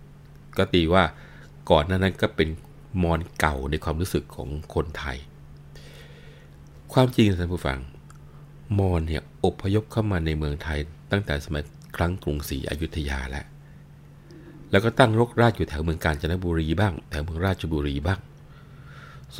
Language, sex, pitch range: Thai, male, 75-110 Hz